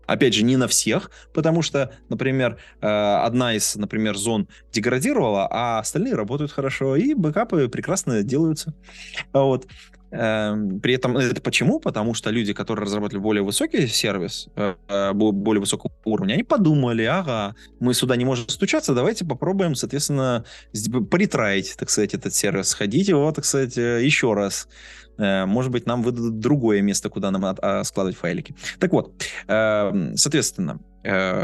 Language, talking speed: Russian, 135 wpm